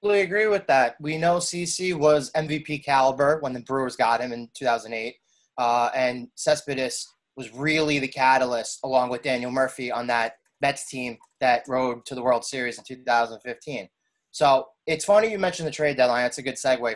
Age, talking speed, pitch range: 20-39, 180 wpm, 125-175 Hz